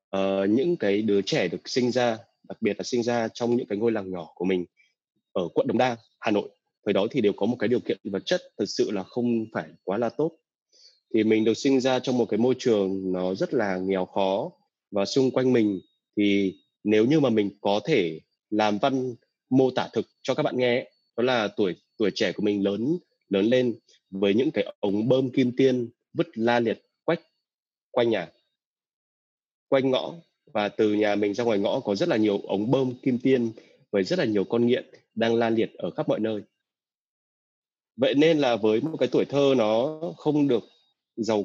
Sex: male